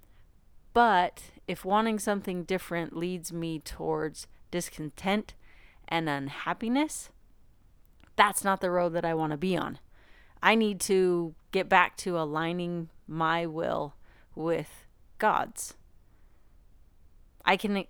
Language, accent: English, American